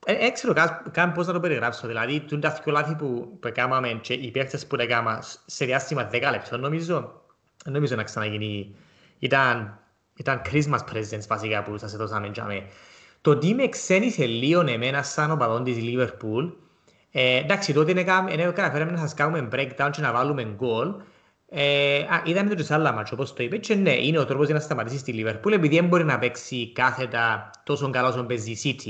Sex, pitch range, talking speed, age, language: male, 115-165 Hz, 95 wpm, 30-49, Greek